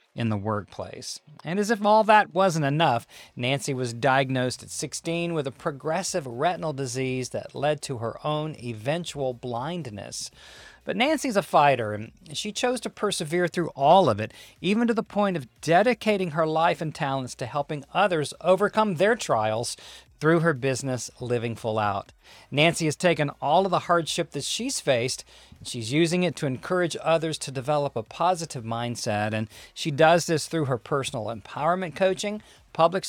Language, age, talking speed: English, 40-59, 170 wpm